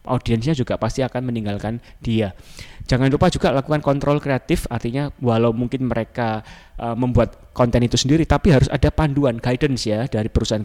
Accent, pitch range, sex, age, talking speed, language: native, 110-130 Hz, male, 20-39, 165 wpm, Indonesian